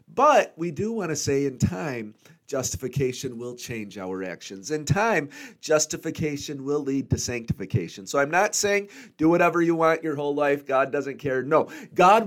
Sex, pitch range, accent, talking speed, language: male, 120-170 Hz, American, 175 wpm, English